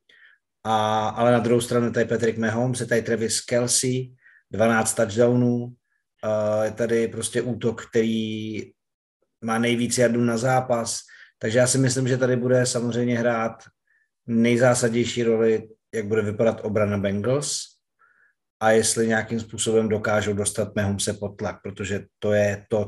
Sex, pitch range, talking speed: male, 105-120 Hz, 140 wpm